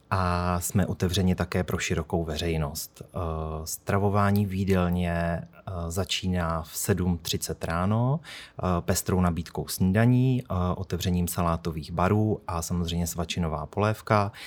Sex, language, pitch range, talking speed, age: male, Czech, 85-100 Hz, 95 wpm, 30-49